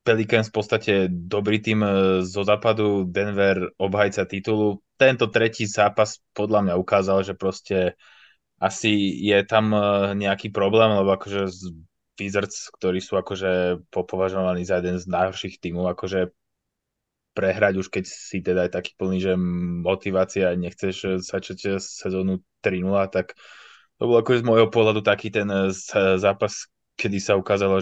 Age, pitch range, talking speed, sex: 20-39, 95-105 Hz, 135 wpm, male